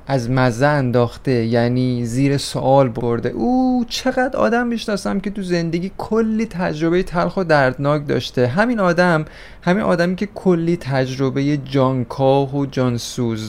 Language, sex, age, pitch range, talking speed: Persian, male, 30-49, 130-170 Hz, 135 wpm